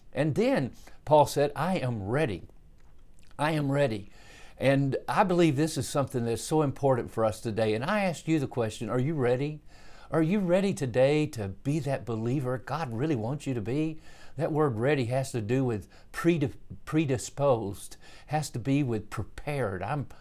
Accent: American